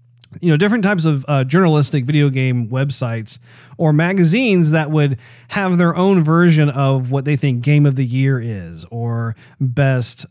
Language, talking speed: English, 170 wpm